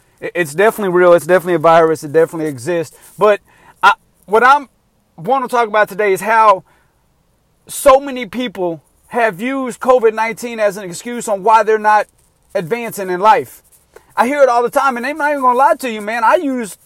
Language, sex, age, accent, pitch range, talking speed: English, male, 40-59, American, 195-265 Hz, 200 wpm